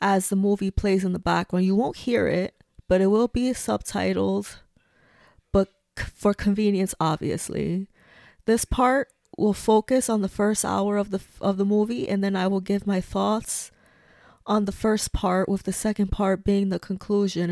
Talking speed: 175 wpm